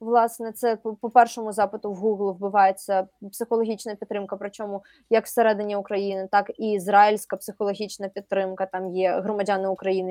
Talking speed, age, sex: 135 wpm, 20-39, female